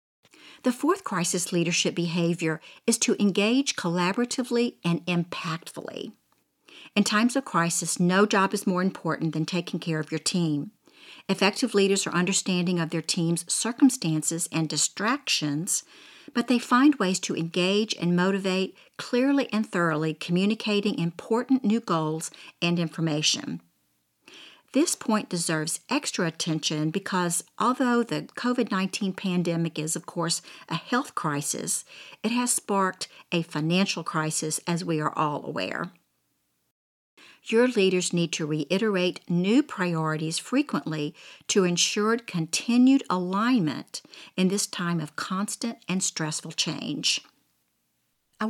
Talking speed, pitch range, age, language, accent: 125 wpm, 165-220 Hz, 50-69, English, American